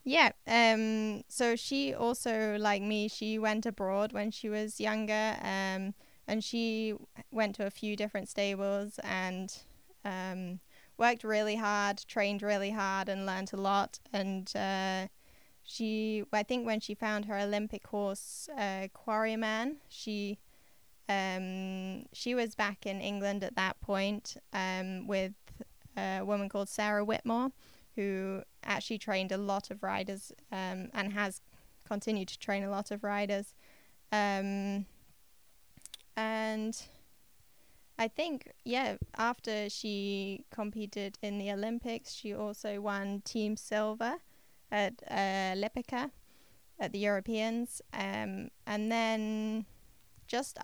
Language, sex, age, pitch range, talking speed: Dutch, female, 10-29, 200-220 Hz, 125 wpm